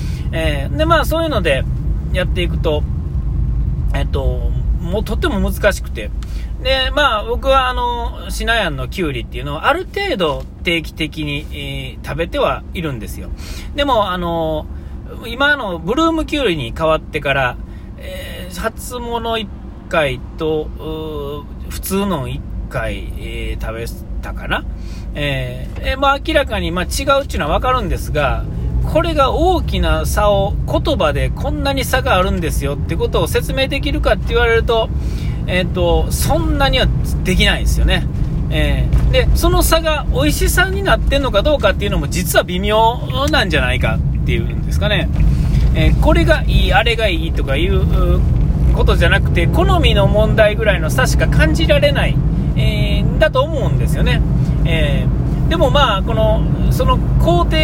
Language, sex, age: Japanese, male, 40-59